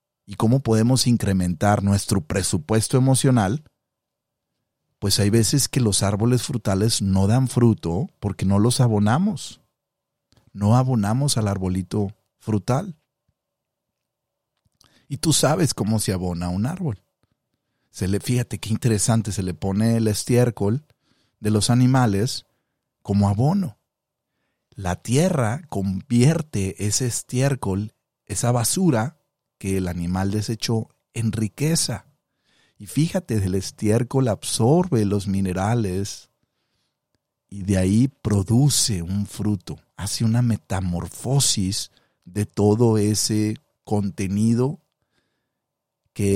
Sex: male